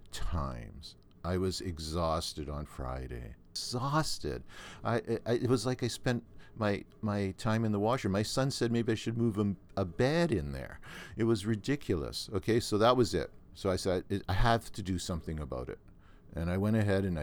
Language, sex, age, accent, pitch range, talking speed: English, male, 50-69, American, 80-105 Hz, 190 wpm